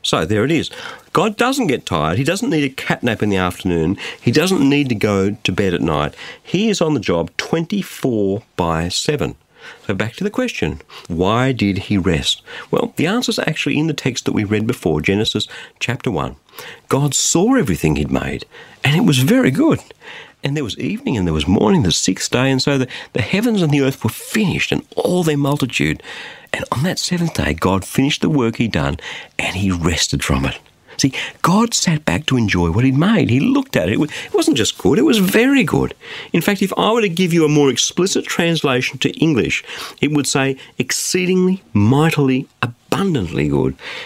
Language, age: English, 50-69